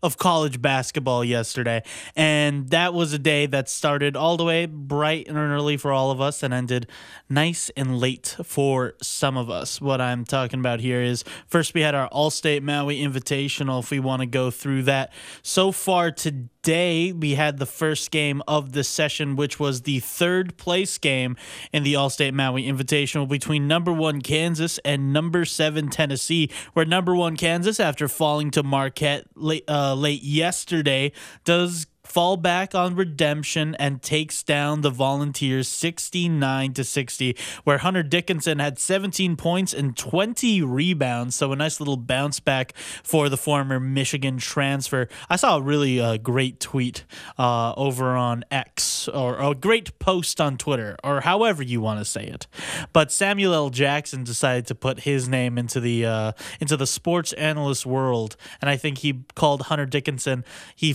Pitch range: 130-155 Hz